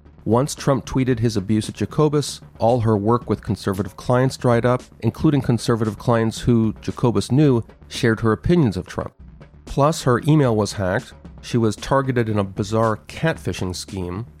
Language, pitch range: English, 105-130 Hz